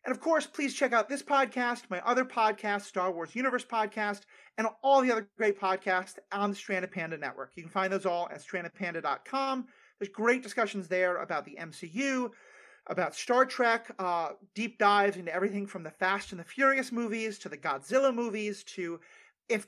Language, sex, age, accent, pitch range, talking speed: English, male, 30-49, American, 180-230 Hz, 185 wpm